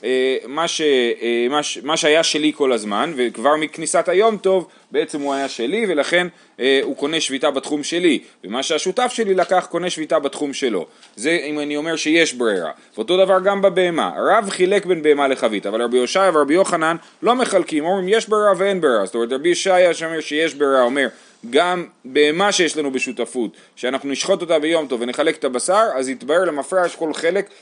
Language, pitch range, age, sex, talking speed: Hebrew, 135-190 Hz, 30-49, male, 180 wpm